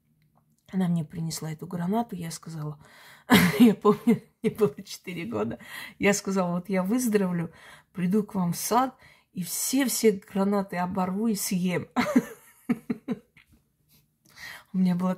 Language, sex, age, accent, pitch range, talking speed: Russian, female, 20-39, native, 165-205 Hz, 125 wpm